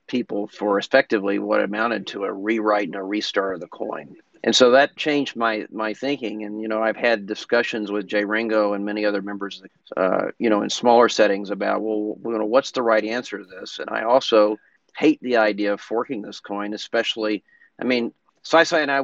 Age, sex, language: 40-59, male, English